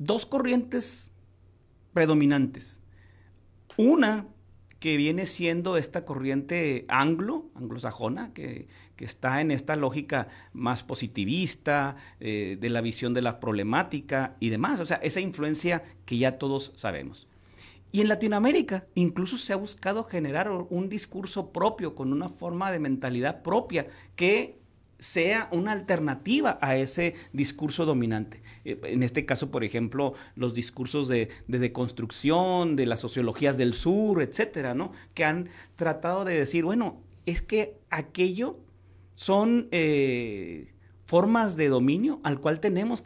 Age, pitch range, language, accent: 50-69, 120-185 Hz, Spanish, Mexican